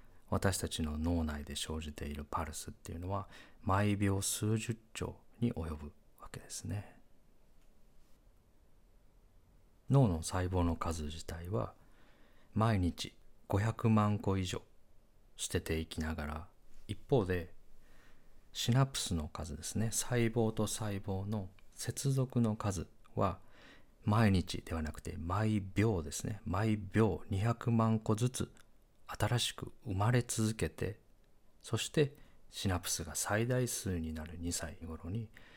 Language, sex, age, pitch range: Japanese, male, 40-59, 80-110 Hz